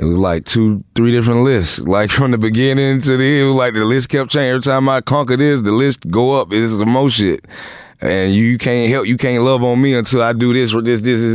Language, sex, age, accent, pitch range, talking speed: English, male, 30-49, American, 85-115 Hz, 280 wpm